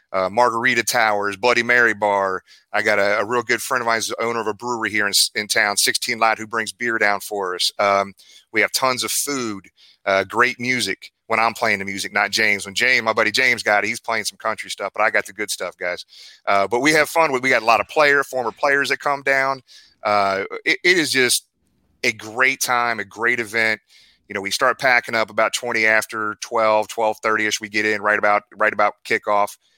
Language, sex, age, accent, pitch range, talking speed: English, male, 30-49, American, 100-115 Hz, 230 wpm